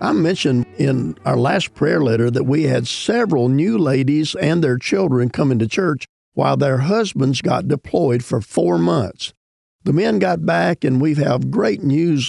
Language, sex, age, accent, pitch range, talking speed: English, male, 50-69, American, 120-145 Hz, 175 wpm